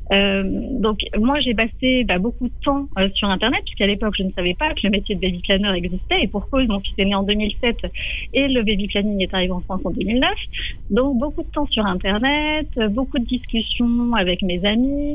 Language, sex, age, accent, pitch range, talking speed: French, female, 30-49, French, 195-255 Hz, 225 wpm